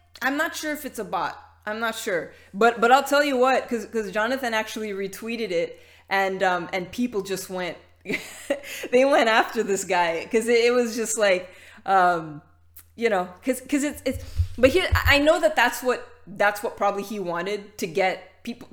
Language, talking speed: English, 190 wpm